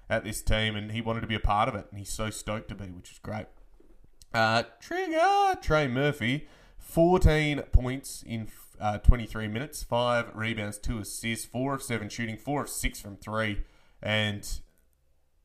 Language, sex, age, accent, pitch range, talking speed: English, male, 20-39, Australian, 100-125 Hz, 175 wpm